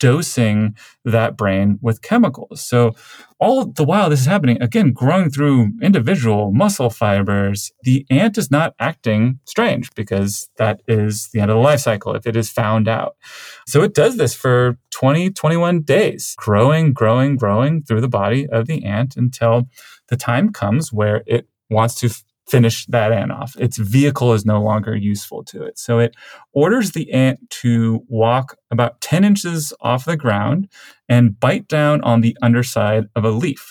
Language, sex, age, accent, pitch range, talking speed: English, male, 30-49, American, 110-135 Hz, 175 wpm